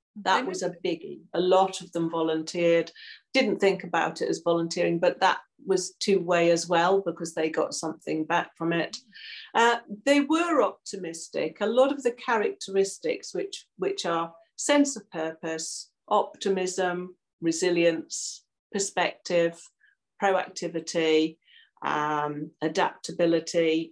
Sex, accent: female, British